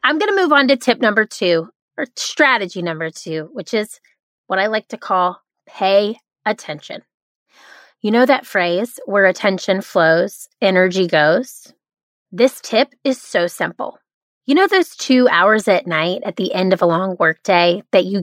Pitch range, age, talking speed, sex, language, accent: 190-255 Hz, 30-49, 170 wpm, female, English, American